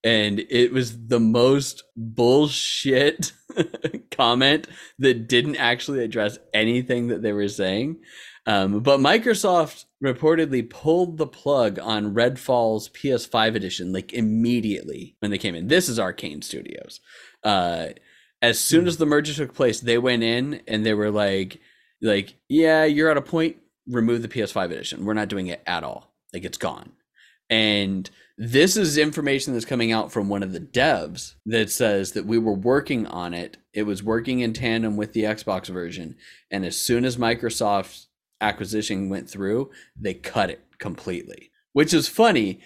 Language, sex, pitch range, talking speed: English, male, 110-150 Hz, 160 wpm